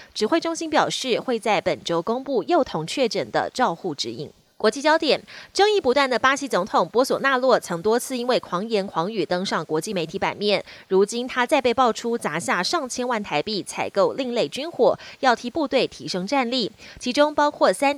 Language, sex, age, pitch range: Chinese, female, 20-39, 195-270 Hz